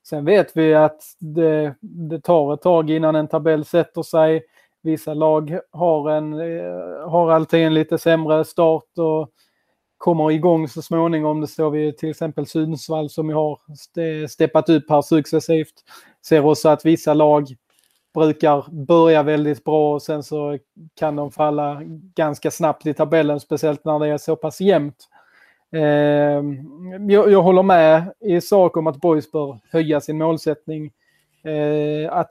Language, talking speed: Swedish, 155 wpm